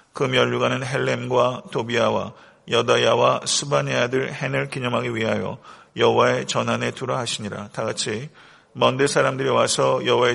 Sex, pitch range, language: male, 115-145 Hz, Korean